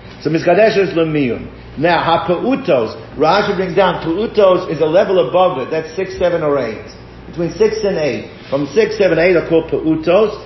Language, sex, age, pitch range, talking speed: English, male, 50-69, 155-190 Hz, 185 wpm